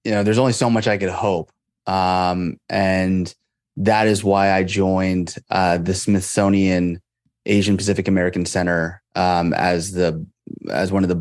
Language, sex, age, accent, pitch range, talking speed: English, male, 30-49, American, 95-110 Hz, 160 wpm